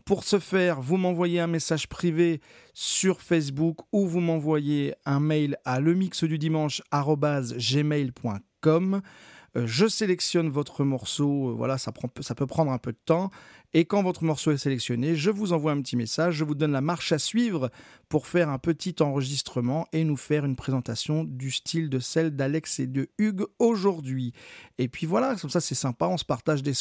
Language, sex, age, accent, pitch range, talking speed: French, male, 40-59, French, 135-185 Hz, 180 wpm